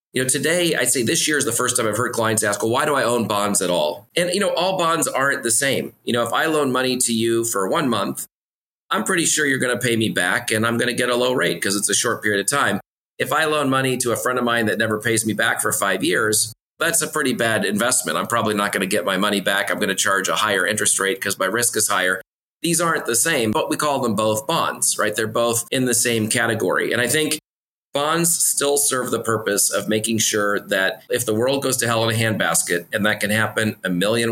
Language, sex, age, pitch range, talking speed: English, male, 30-49, 105-125 Hz, 270 wpm